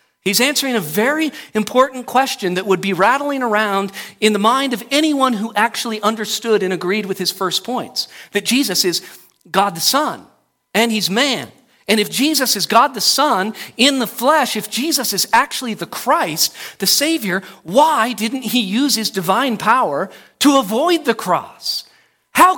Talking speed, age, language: 170 wpm, 40-59, English